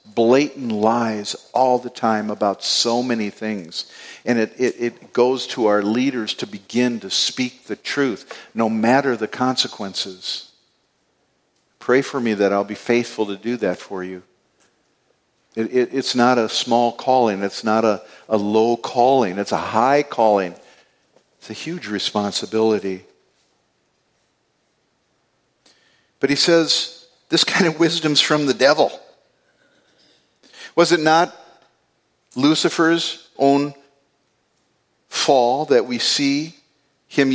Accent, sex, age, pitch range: American, male, 50-69, 110-155 Hz